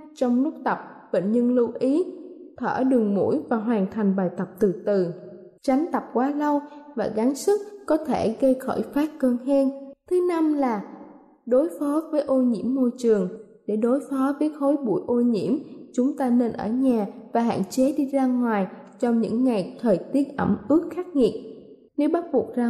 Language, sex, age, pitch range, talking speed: Vietnamese, female, 20-39, 220-275 Hz, 195 wpm